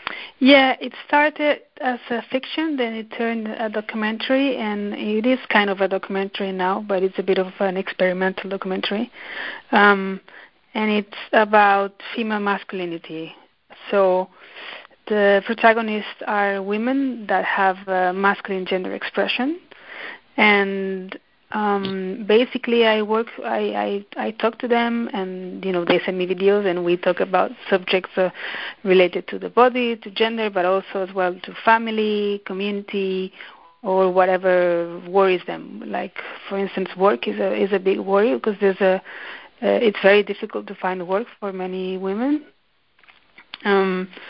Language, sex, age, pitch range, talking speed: English, female, 30-49, 185-220 Hz, 150 wpm